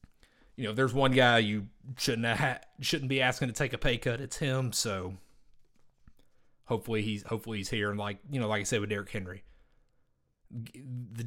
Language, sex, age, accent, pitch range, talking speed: English, male, 30-49, American, 95-125 Hz, 190 wpm